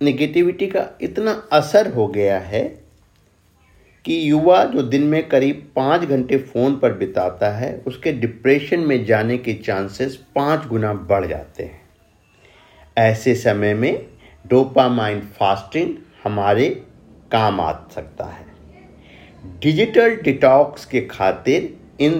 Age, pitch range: 50-69, 105-140 Hz